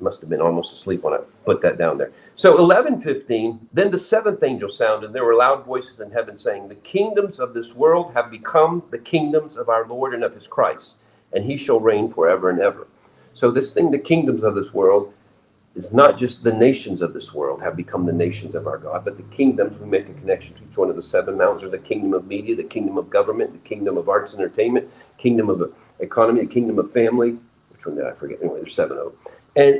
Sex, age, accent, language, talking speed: male, 50-69, American, English, 240 wpm